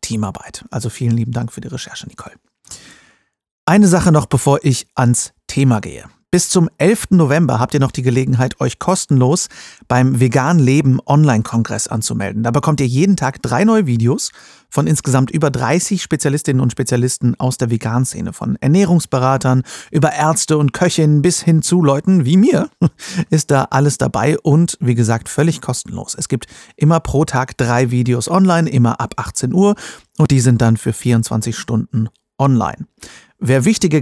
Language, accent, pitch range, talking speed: German, German, 120-155 Hz, 160 wpm